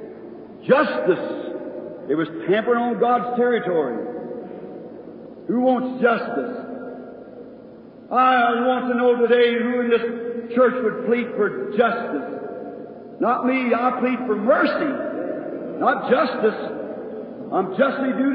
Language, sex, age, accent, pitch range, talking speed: English, male, 60-79, American, 240-295 Hz, 110 wpm